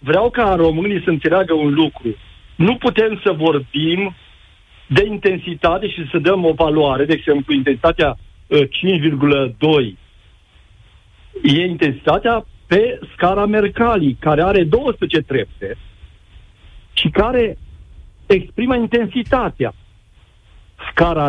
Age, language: 50-69, Romanian